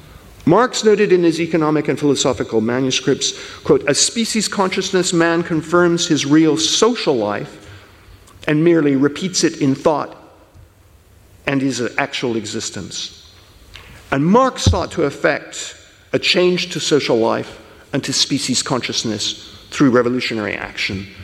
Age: 50-69